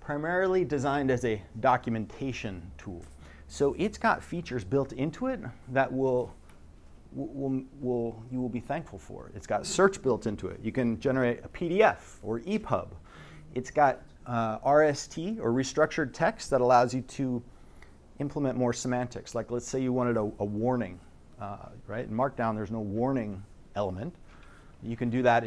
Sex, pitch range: male, 105-140 Hz